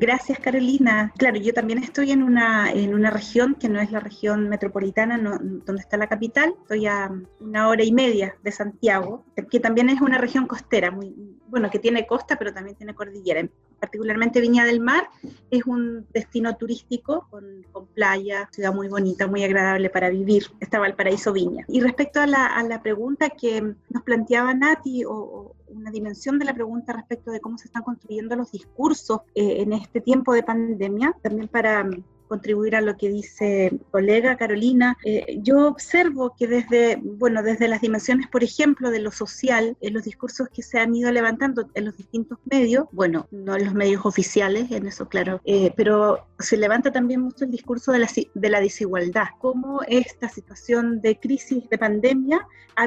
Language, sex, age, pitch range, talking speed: Spanish, female, 30-49, 210-250 Hz, 185 wpm